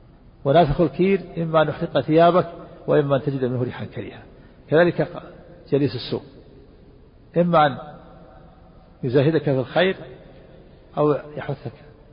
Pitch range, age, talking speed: 120-155 Hz, 50-69, 110 wpm